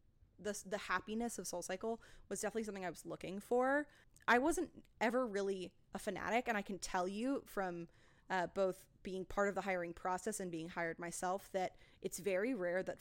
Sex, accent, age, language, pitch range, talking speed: female, American, 20-39, English, 180-225 Hz, 190 wpm